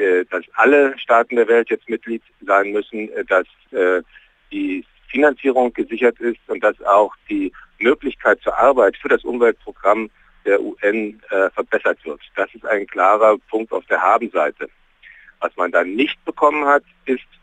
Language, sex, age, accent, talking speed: German, male, 50-69, German, 155 wpm